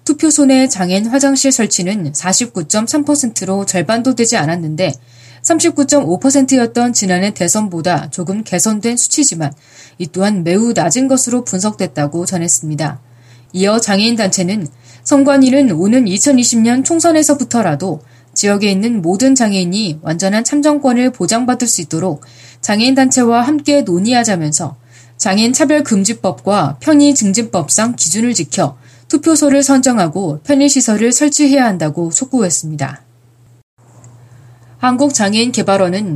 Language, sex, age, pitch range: Korean, female, 20-39, 160-245 Hz